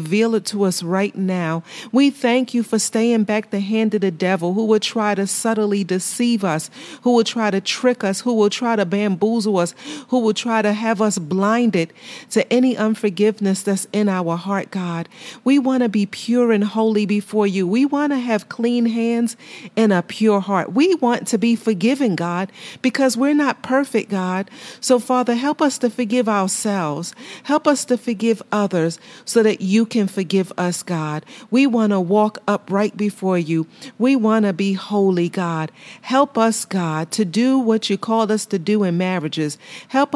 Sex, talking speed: female, 190 wpm